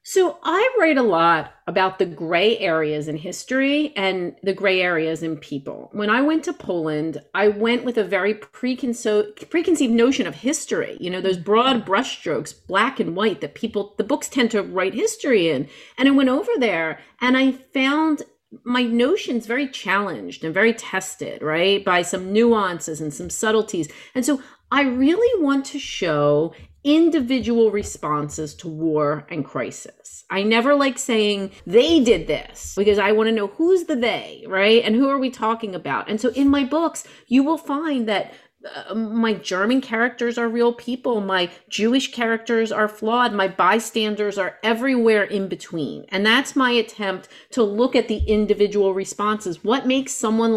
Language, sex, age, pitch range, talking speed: English, female, 40-59, 190-260 Hz, 170 wpm